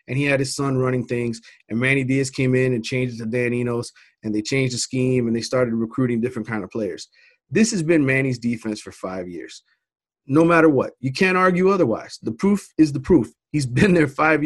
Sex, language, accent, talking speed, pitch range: male, English, American, 230 wpm, 125-165 Hz